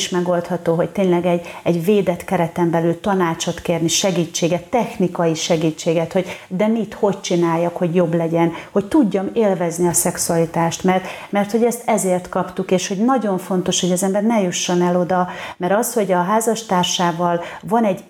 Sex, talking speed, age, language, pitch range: female, 170 wpm, 30-49, Hungarian, 170-200 Hz